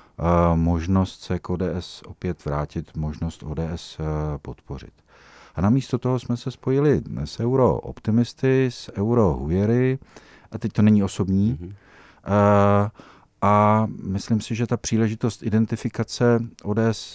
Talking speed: 125 wpm